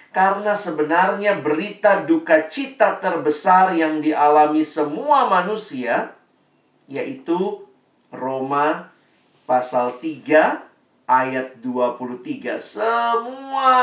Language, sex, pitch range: Indonesian, male, 150-205 Hz